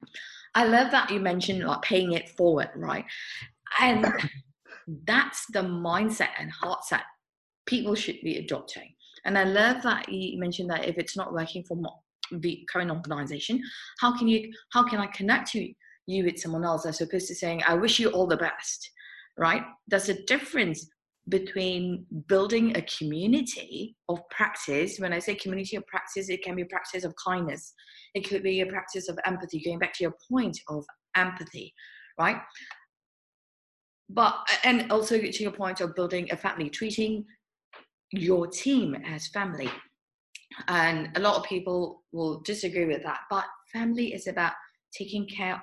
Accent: British